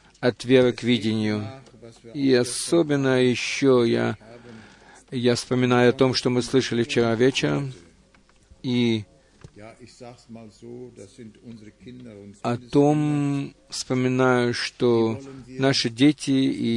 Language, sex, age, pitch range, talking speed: Russian, male, 50-69, 120-140 Hz, 90 wpm